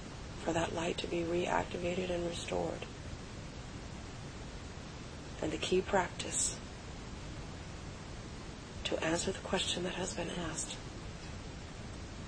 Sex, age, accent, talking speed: female, 40-59, American, 100 wpm